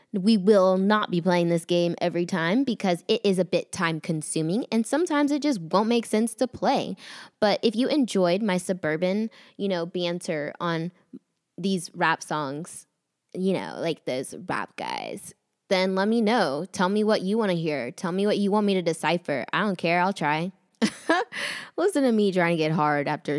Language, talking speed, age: English, 195 wpm, 10-29